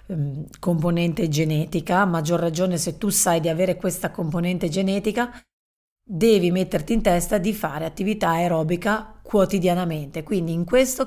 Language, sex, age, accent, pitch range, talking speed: Italian, female, 30-49, native, 165-210 Hz, 130 wpm